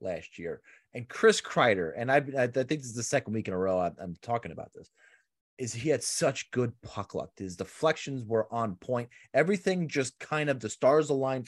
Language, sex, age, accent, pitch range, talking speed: English, male, 30-49, American, 100-140 Hz, 215 wpm